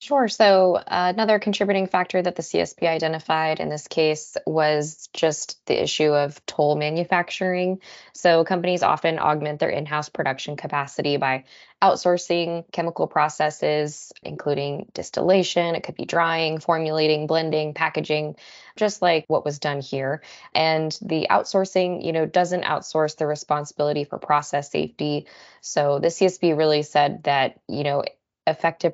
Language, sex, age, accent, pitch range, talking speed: English, female, 20-39, American, 145-170 Hz, 140 wpm